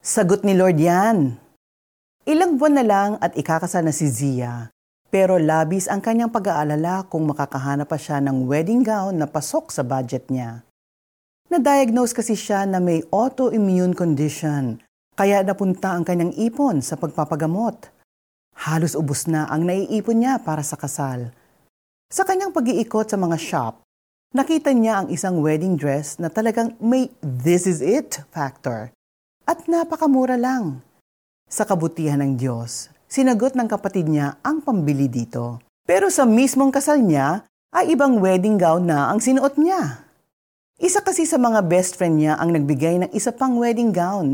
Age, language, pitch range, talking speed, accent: 40-59, Filipino, 150-240 Hz, 150 wpm, native